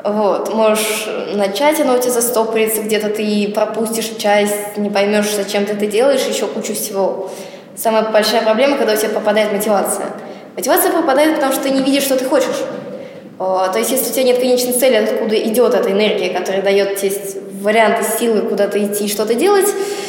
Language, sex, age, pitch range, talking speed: Russian, female, 20-39, 205-265 Hz, 175 wpm